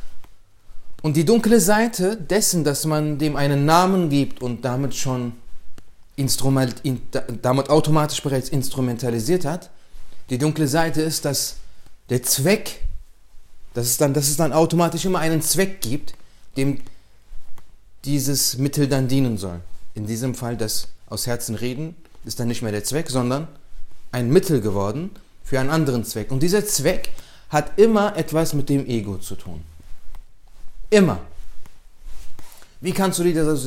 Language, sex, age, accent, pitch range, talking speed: German, male, 30-49, German, 110-155 Hz, 140 wpm